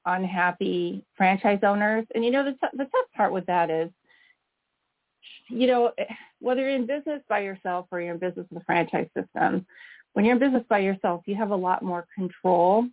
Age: 40-59